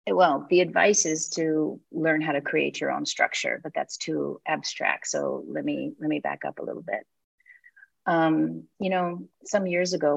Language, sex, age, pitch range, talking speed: English, female, 40-59, 150-240 Hz, 190 wpm